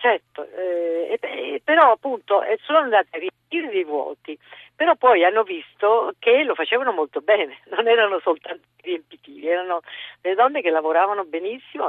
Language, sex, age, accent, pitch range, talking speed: Italian, female, 50-69, native, 150-190 Hz, 155 wpm